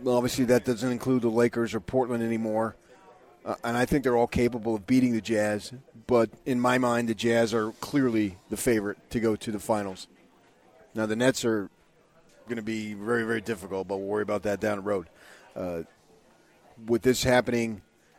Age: 40-59